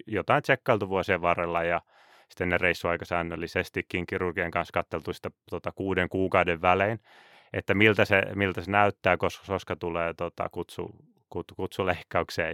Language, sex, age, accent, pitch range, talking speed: Finnish, male, 30-49, native, 85-100 Hz, 135 wpm